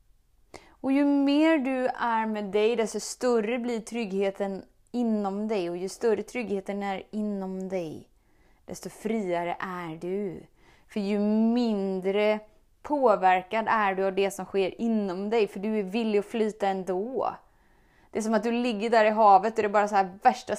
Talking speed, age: 170 wpm, 20-39